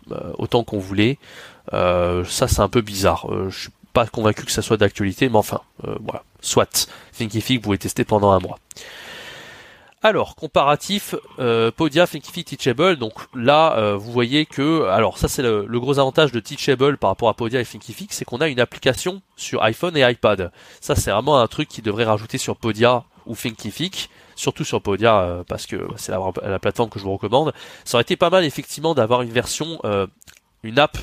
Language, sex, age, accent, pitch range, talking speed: French, male, 20-39, French, 105-140 Hz, 195 wpm